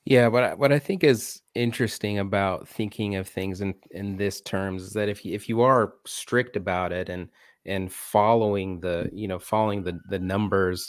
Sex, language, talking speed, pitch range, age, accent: male, English, 200 wpm, 95-105 Hz, 30-49, American